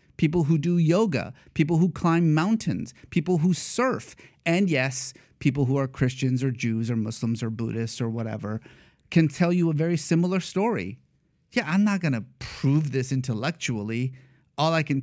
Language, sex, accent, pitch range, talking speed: English, male, American, 125-175 Hz, 170 wpm